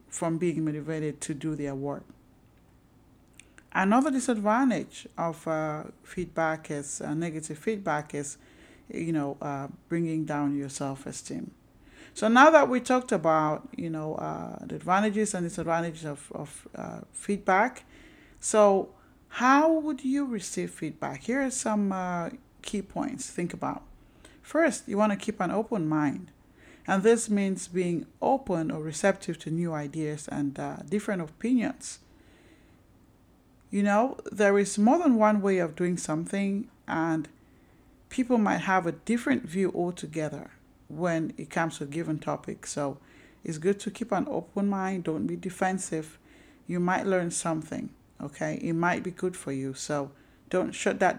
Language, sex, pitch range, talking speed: English, male, 155-210 Hz, 150 wpm